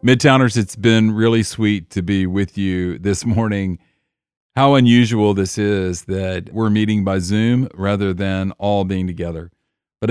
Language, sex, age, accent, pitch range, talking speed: English, male, 40-59, American, 95-115 Hz, 155 wpm